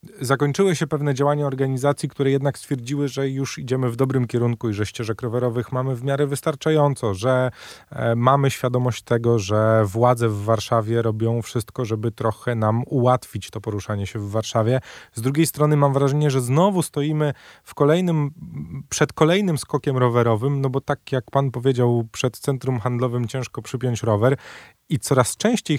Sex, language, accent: male, Polish, native